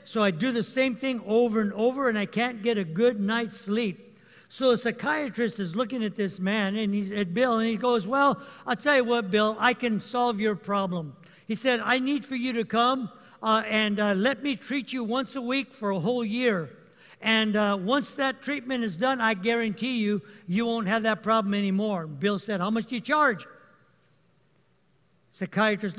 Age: 60-79